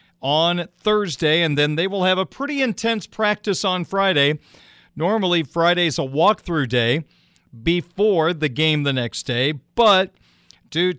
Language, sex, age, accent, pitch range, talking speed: English, male, 40-59, American, 145-185 Hz, 140 wpm